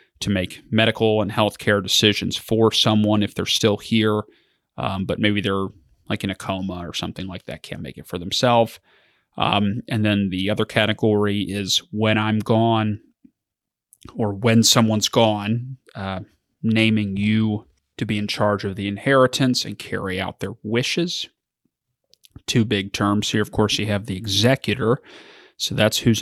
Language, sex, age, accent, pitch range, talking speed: English, male, 30-49, American, 100-110 Hz, 160 wpm